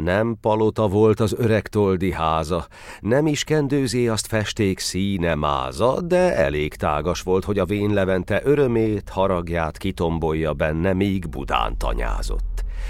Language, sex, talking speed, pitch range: Hungarian, male, 135 wpm, 85-110 Hz